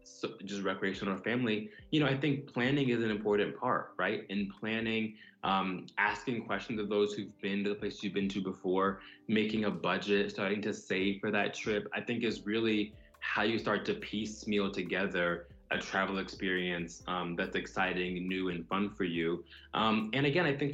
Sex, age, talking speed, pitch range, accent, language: male, 20-39, 190 wpm, 95-110 Hz, American, English